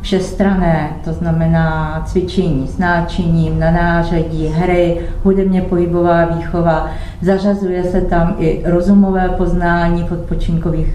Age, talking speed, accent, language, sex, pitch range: 50-69, 105 wpm, native, Czech, female, 165-185 Hz